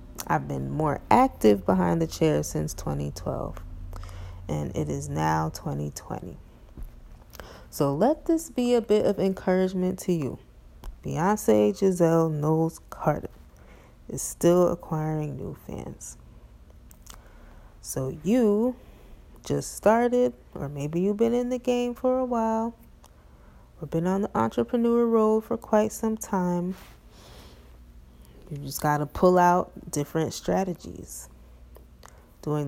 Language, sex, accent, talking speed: English, female, American, 120 wpm